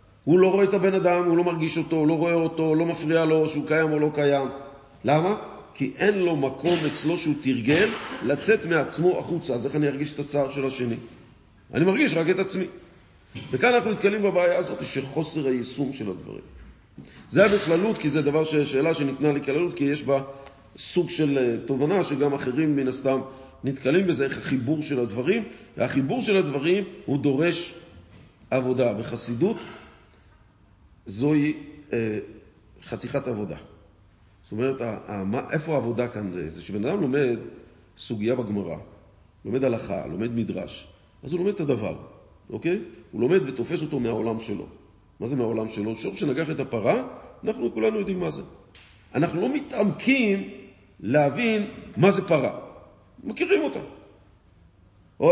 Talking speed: 130 wpm